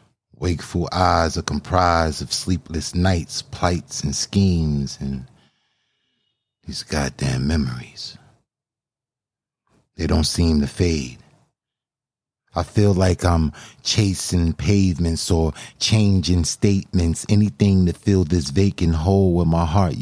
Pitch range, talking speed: 75-95 Hz, 110 wpm